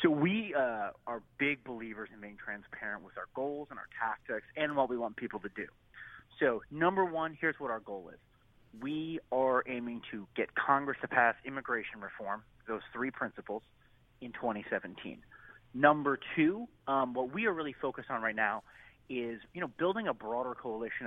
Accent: American